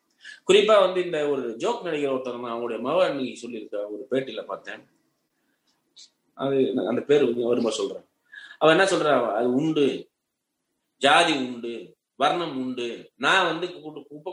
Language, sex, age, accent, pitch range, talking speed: Tamil, male, 30-49, native, 130-190 Hz, 130 wpm